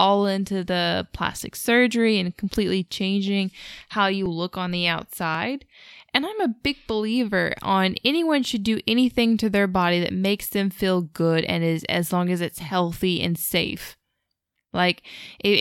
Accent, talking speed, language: American, 165 wpm, English